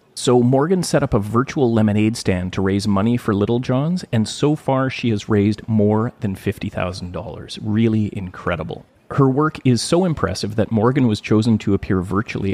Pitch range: 100-125 Hz